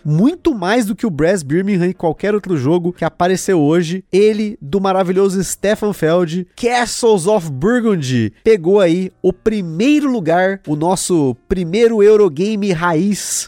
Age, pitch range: 30-49, 165-210 Hz